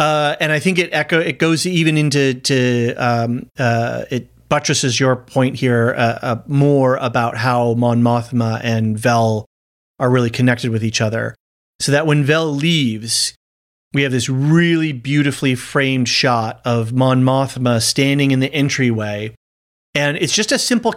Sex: male